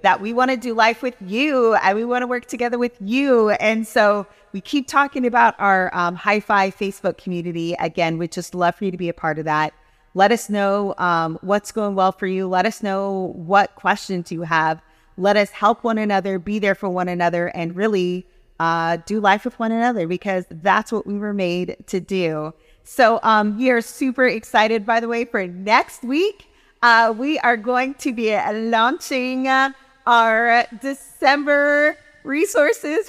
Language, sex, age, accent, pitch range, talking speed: English, female, 30-49, American, 185-250 Hz, 185 wpm